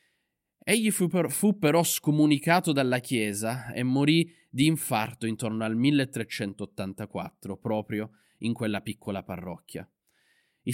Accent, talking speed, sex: native, 105 wpm, male